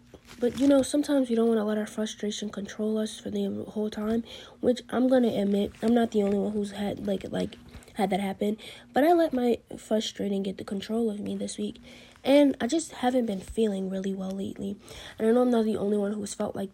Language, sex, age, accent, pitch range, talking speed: English, female, 20-39, American, 205-235 Hz, 235 wpm